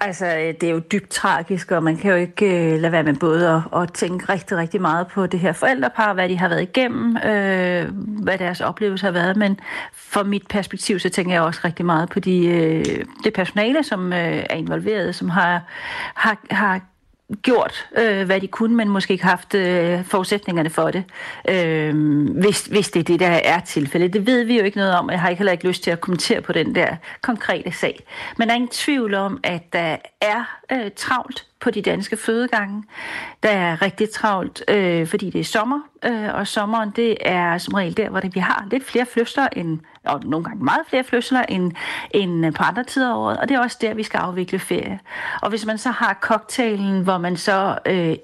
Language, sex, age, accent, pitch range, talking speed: Danish, female, 40-59, native, 175-220 Hz, 210 wpm